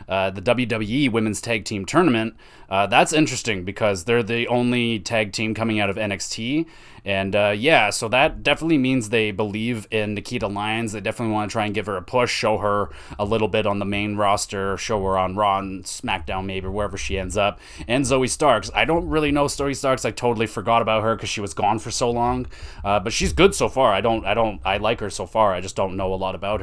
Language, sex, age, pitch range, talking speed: English, male, 20-39, 100-120 Hz, 235 wpm